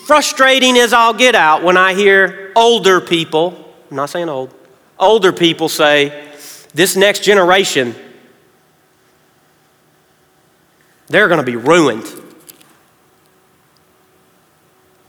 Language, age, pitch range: English, 40-59, 155-205 Hz